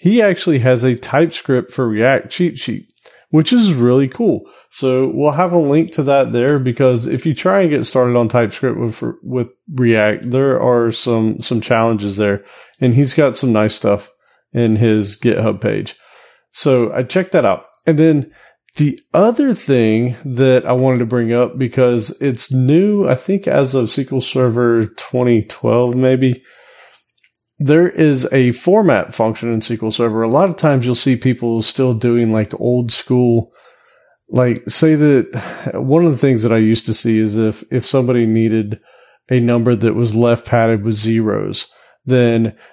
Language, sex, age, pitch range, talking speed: English, male, 30-49, 115-135 Hz, 170 wpm